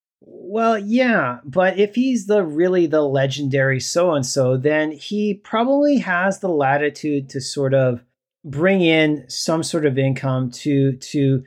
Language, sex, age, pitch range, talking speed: English, male, 40-59, 135-175 Hz, 140 wpm